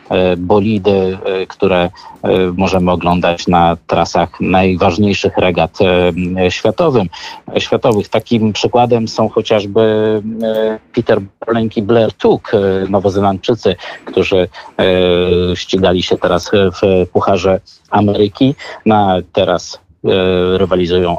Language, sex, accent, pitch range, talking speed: Polish, male, native, 95-120 Hz, 85 wpm